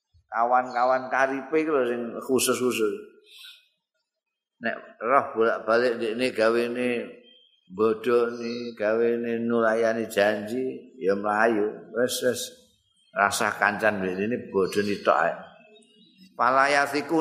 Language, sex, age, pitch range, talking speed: Indonesian, male, 50-69, 115-140 Hz, 100 wpm